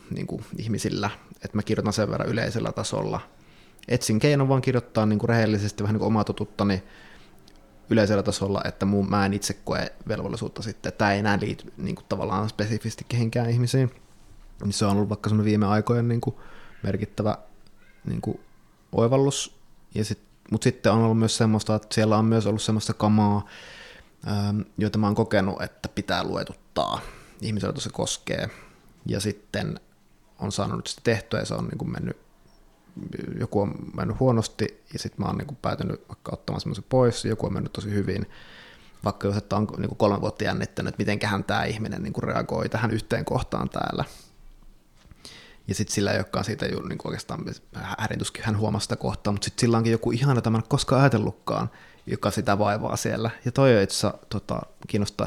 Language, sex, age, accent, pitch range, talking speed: Finnish, male, 20-39, native, 100-115 Hz, 155 wpm